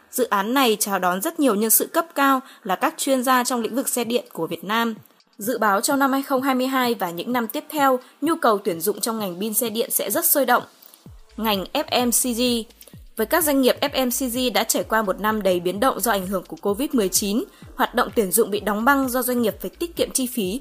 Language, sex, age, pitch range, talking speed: Vietnamese, female, 20-39, 205-265 Hz, 235 wpm